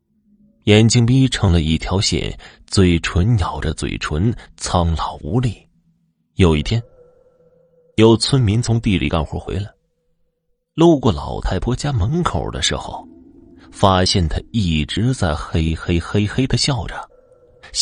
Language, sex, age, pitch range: Chinese, male, 30-49, 90-125 Hz